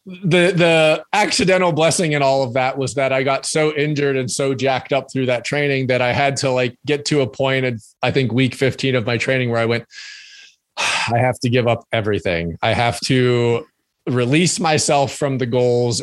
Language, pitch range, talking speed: English, 120-145 Hz, 205 wpm